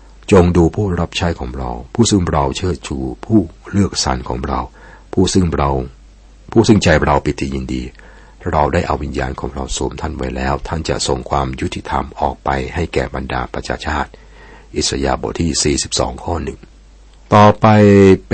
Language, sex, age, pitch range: Thai, male, 60-79, 70-90 Hz